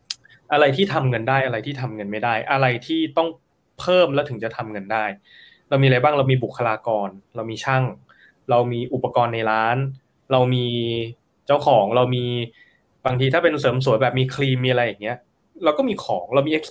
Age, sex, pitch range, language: 20-39, male, 120-155 Hz, Thai